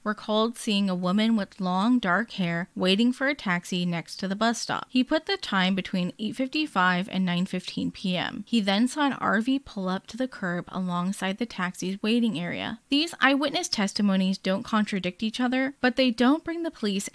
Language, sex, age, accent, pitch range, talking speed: English, female, 10-29, American, 185-235 Hz, 190 wpm